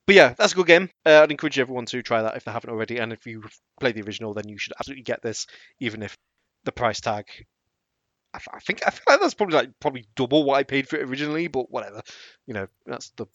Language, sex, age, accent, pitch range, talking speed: English, male, 20-39, British, 110-135 Hz, 260 wpm